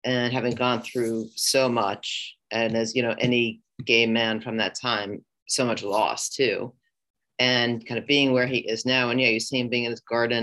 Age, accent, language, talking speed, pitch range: 30-49, American, English, 215 wpm, 110-130 Hz